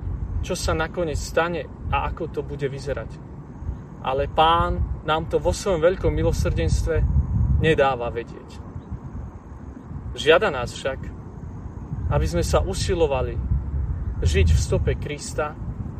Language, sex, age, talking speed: Slovak, male, 40-59, 115 wpm